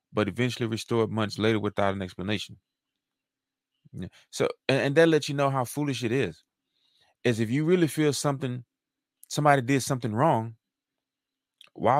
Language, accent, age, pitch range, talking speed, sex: English, American, 20-39, 110-130 Hz, 150 wpm, male